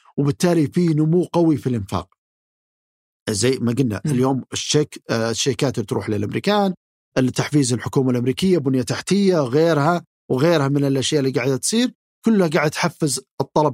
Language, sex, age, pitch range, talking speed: Arabic, male, 50-69, 130-165 Hz, 135 wpm